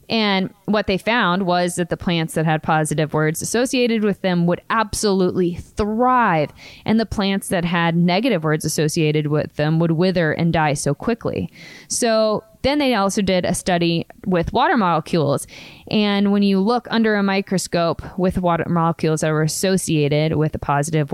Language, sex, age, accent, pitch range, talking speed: English, female, 20-39, American, 160-205 Hz, 170 wpm